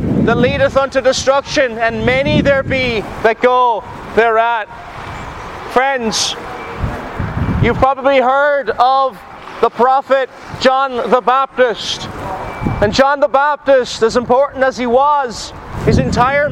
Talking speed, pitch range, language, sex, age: 115 wpm, 245-275 Hz, English, male, 30-49